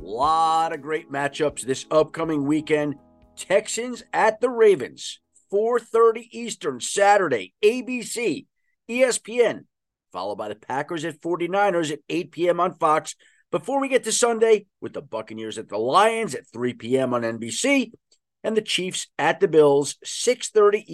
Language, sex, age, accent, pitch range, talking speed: English, male, 50-69, American, 150-230 Hz, 145 wpm